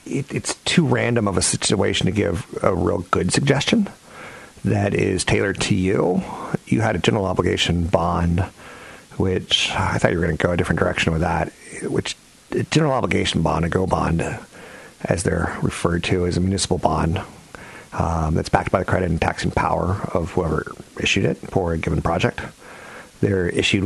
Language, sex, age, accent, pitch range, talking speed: English, male, 40-59, American, 85-95 Hz, 180 wpm